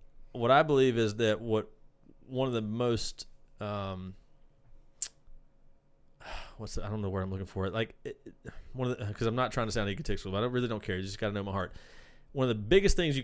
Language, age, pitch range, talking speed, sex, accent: English, 30-49, 105-125 Hz, 230 wpm, male, American